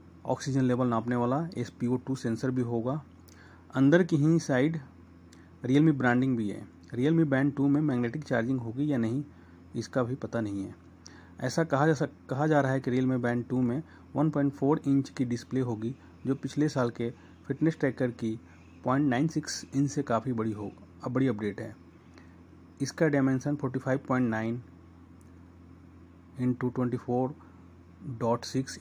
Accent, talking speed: native, 145 wpm